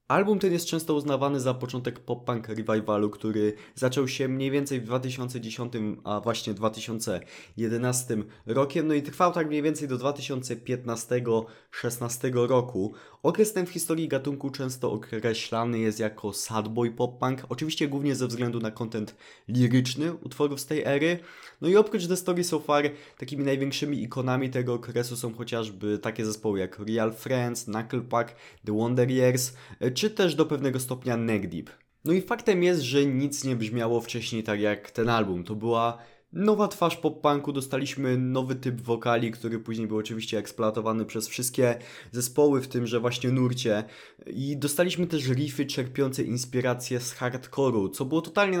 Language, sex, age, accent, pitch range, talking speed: Polish, male, 20-39, native, 115-140 Hz, 160 wpm